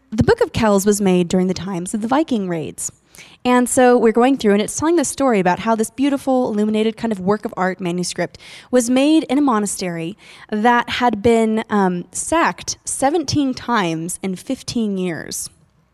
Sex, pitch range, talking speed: female, 190-250 Hz, 185 wpm